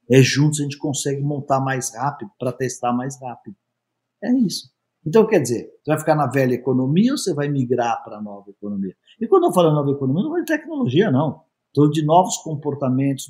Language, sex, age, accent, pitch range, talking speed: Portuguese, male, 50-69, Brazilian, 130-195 Hz, 210 wpm